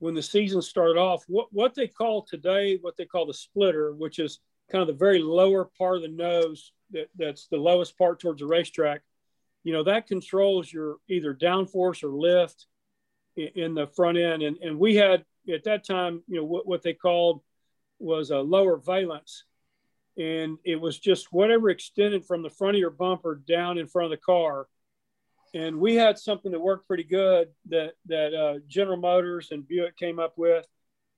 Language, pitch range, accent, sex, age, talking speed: English, 160-190 Hz, American, male, 40-59, 190 wpm